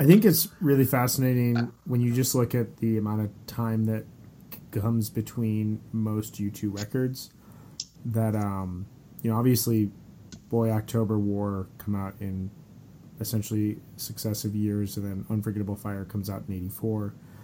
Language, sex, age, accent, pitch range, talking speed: English, male, 30-49, American, 105-120 Hz, 145 wpm